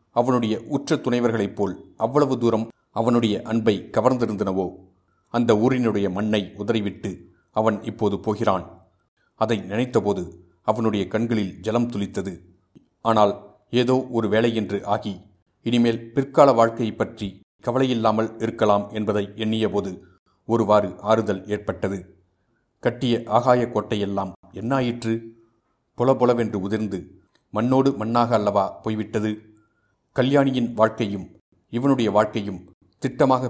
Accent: native